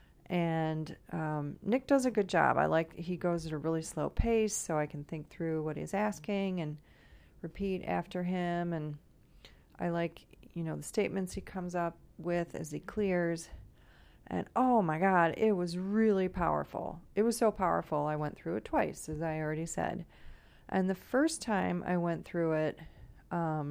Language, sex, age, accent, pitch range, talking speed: English, female, 30-49, American, 155-190 Hz, 180 wpm